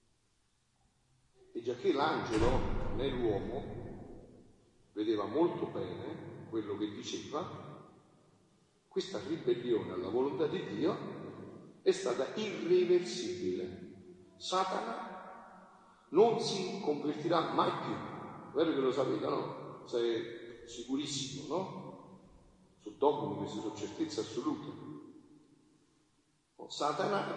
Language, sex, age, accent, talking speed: Italian, male, 40-59, native, 90 wpm